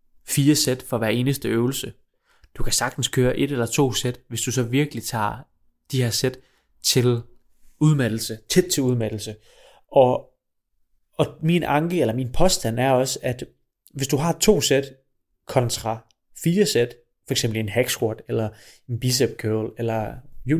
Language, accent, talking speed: Danish, native, 160 wpm